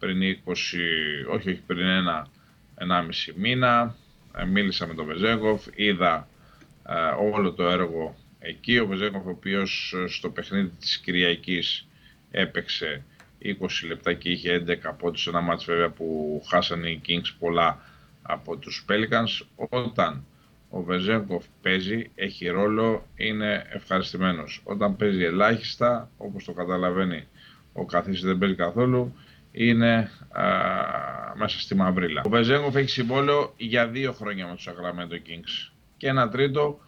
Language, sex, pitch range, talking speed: Greek, male, 90-120 Hz, 130 wpm